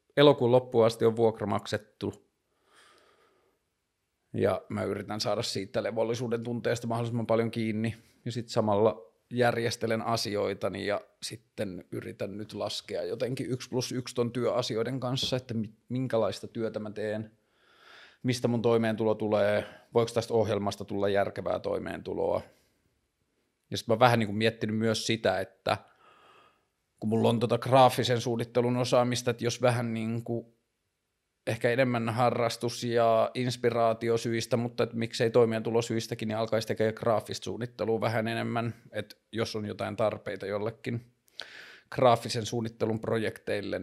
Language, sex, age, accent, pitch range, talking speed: Finnish, male, 30-49, native, 110-120 Hz, 125 wpm